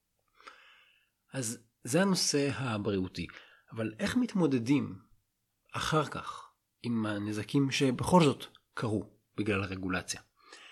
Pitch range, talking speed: 100-130 Hz, 90 wpm